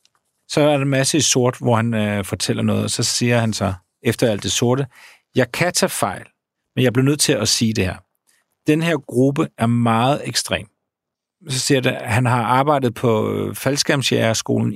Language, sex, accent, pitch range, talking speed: Danish, male, native, 110-140 Hz, 200 wpm